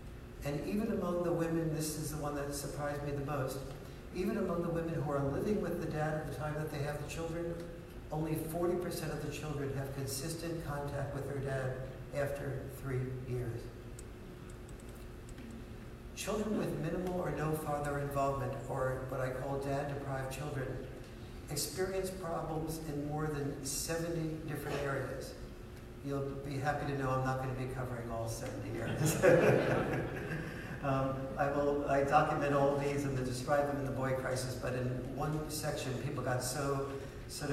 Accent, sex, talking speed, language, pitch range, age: American, male, 165 wpm, English, 130-150 Hz, 60-79